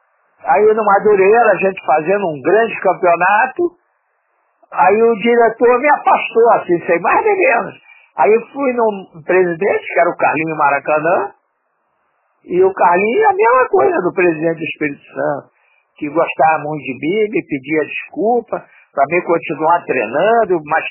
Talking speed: 150 wpm